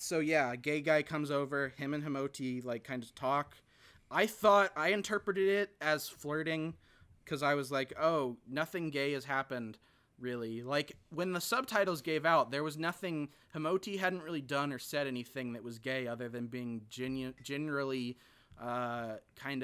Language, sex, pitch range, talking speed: English, male, 125-155 Hz, 175 wpm